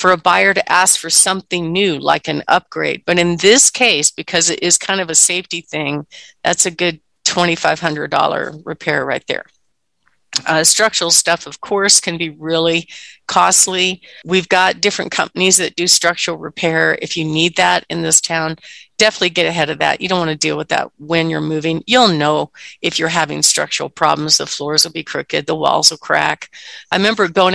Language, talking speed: English, 190 wpm